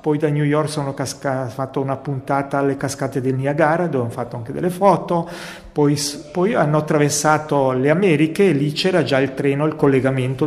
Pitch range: 135-165 Hz